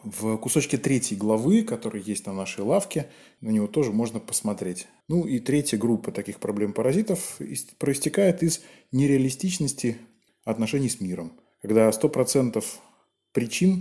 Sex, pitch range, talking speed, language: male, 110-155 Hz, 135 wpm, Russian